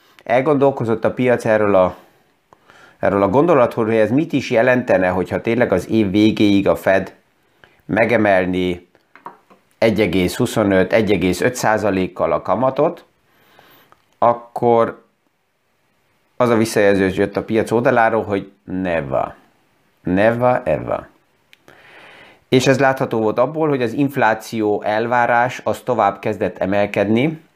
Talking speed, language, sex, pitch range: 110 wpm, Hungarian, male, 100-120 Hz